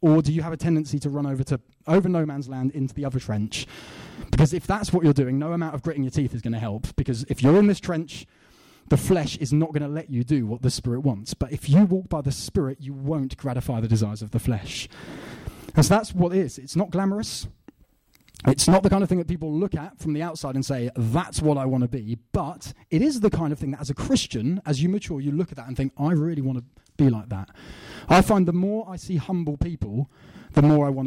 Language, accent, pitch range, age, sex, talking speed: English, British, 130-165 Hz, 20-39, male, 265 wpm